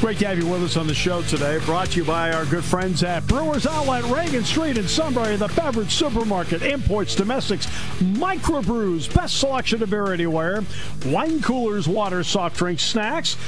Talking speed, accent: 185 wpm, American